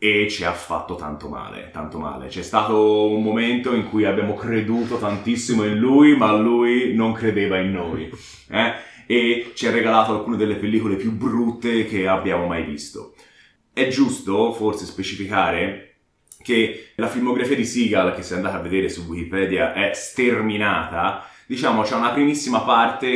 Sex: male